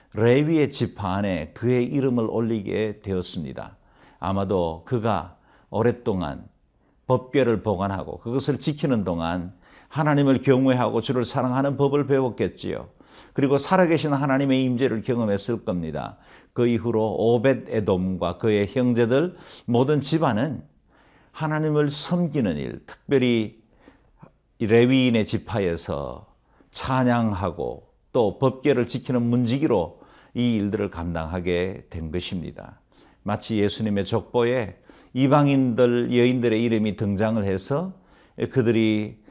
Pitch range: 105-130 Hz